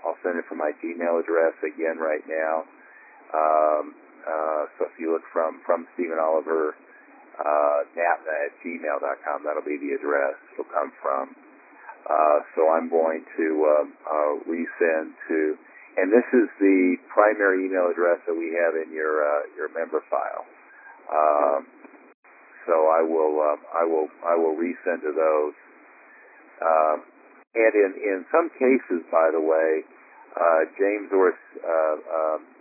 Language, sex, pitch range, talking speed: English, male, 80-105 Hz, 150 wpm